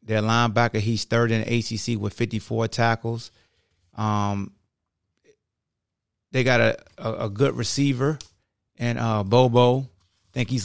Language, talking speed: English, 135 wpm